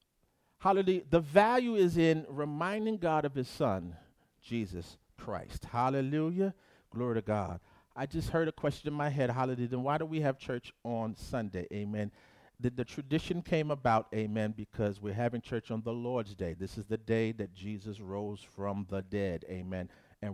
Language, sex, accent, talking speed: English, male, American, 175 wpm